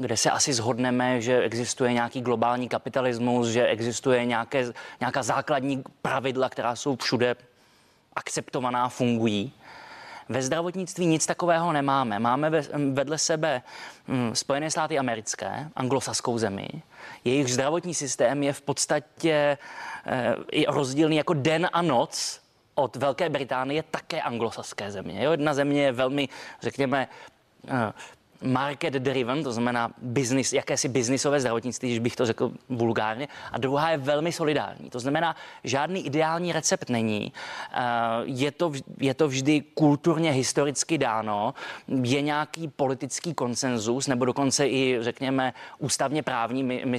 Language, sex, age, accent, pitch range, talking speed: Czech, male, 20-39, native, 125-150 Hz, 130 wpm